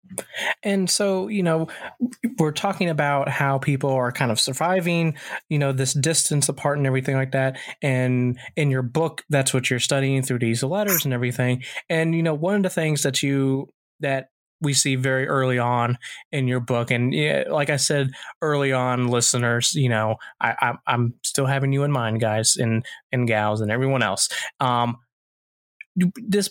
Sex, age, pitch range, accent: male, 20-39, 120-150 Hz, American